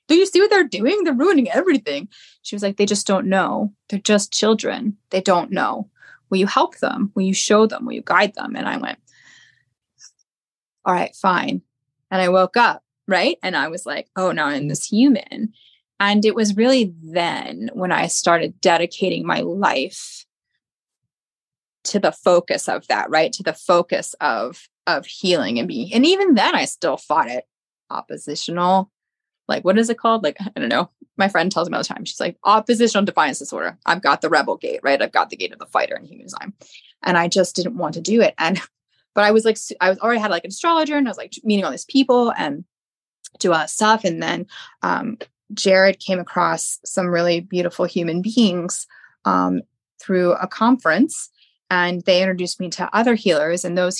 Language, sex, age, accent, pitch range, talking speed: English, female, 20-39, American, 180-240 Hz, 200 wpm